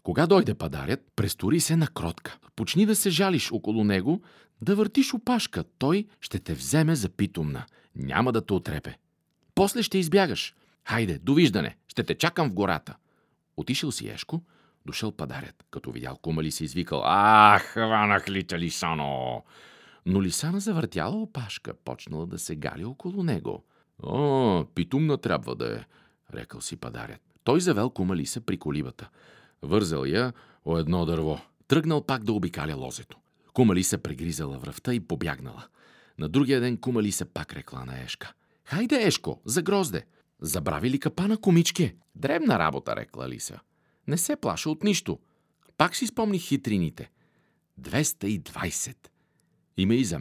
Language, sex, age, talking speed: Bulgarian, male, 50-69, 150 wpm